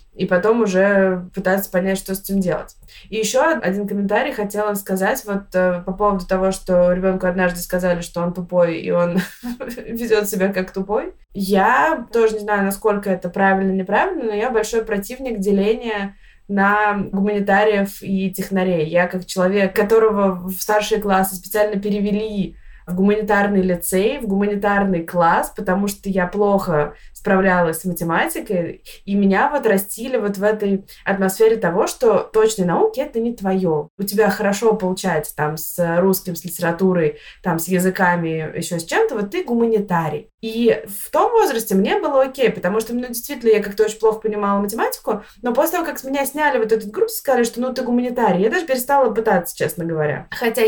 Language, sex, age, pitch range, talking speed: Russian, female, 20-39, 185-225 Hz, 170 wpm